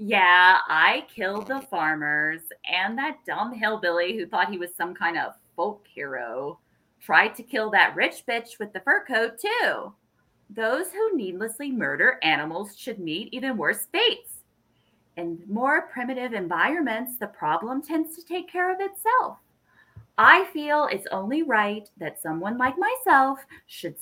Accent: American